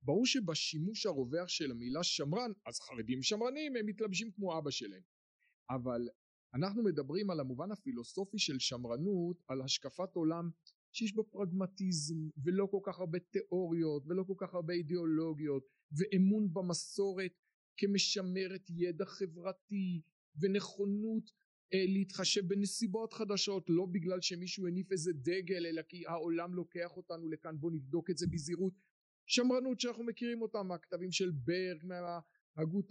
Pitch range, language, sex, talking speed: 150-190 Hz, Hebrew, male, 130 wpm